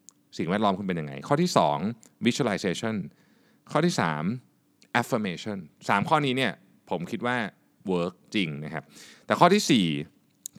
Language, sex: Thai, male